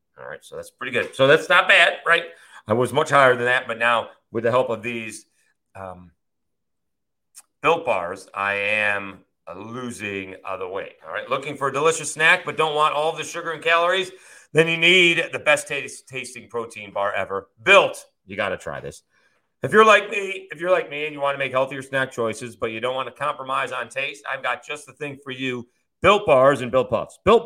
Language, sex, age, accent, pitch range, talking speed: English, male, 40-59, American, 130-170 Hz, 220 wpm